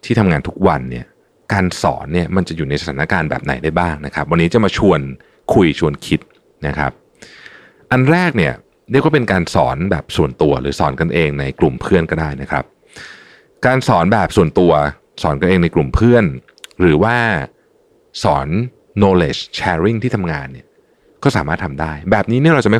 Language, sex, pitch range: Thai, male, 75-105 Hz